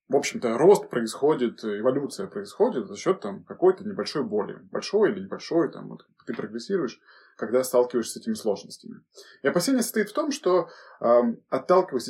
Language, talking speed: Russian, 155 wpm